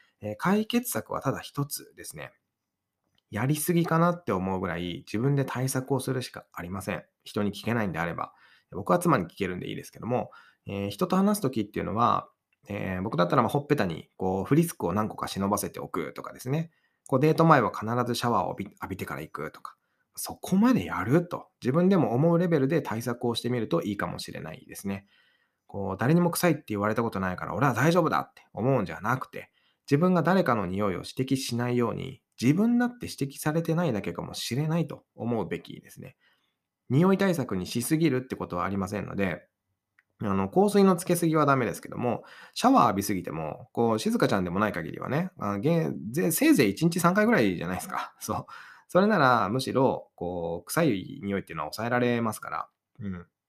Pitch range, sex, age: 100-165 Hz, male, 20-39